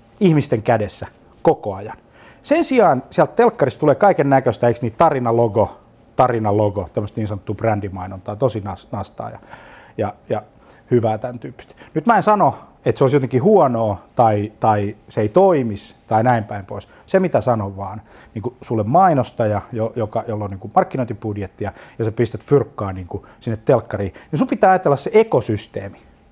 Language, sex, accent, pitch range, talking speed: Finnish, male, native, 105-130 Hz, 165 wpm